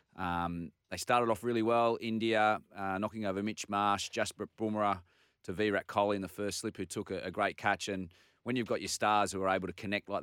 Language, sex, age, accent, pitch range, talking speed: English, male, 30-49, Australian, 95-110 Hz, 230 wpm